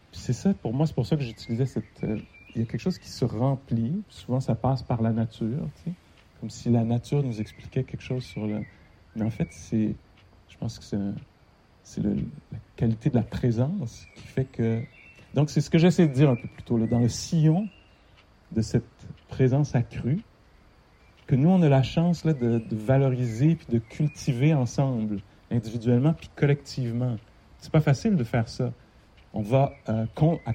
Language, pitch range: English, 110-140 Hz